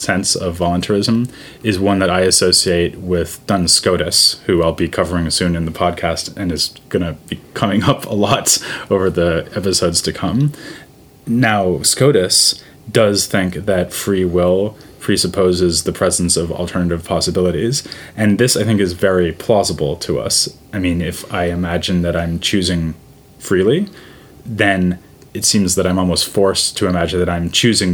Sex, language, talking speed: male, English, 165 wpm